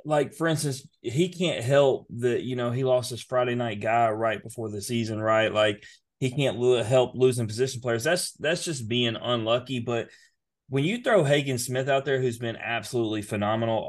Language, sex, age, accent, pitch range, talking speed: English, male, 30-49, American, 115-135 Hz, 195 wpm